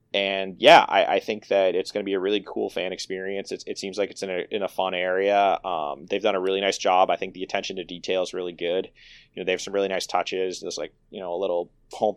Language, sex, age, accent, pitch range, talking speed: English, male, 30-49, American, 90-105 Hz, 280 wpm